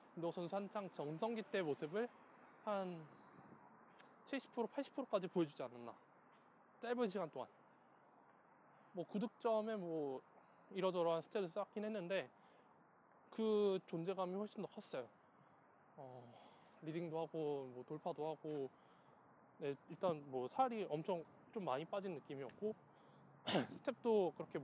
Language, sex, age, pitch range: Korean, male, 20-39, 155-215 Hz